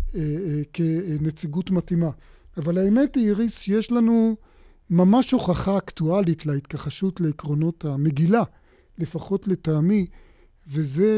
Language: Hebrew